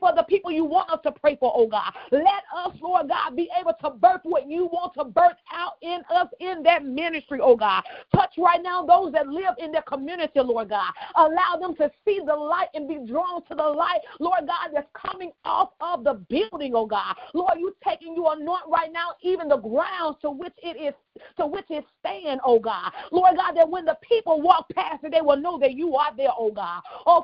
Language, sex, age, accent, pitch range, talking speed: English, female, 40-59, American, 295-360 Hz, 225 wpm